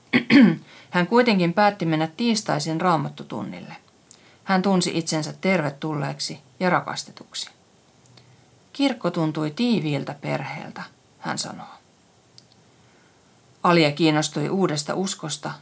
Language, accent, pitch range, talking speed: Finnish, native, 155-205 Hz, 85 wpm